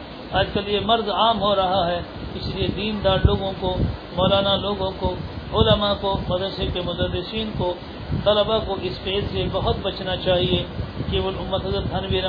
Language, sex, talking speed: English, male, 160 wpm